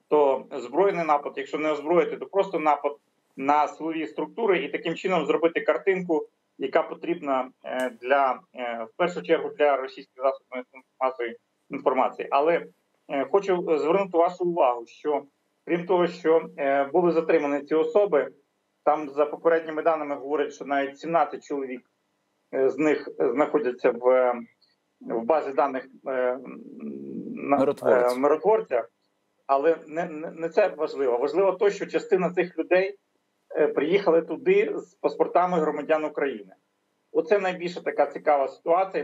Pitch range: 140-175 Hz